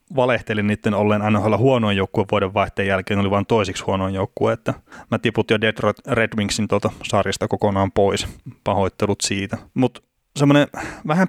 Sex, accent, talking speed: male, native, 155 wpm